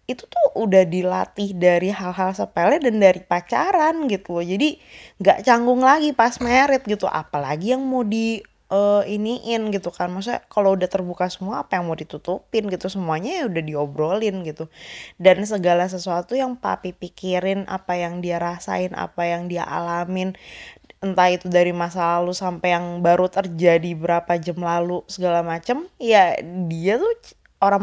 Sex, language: female, Indonesian